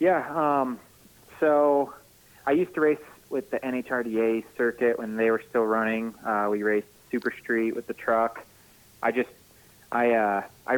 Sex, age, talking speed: male, 30-49, 155 wpm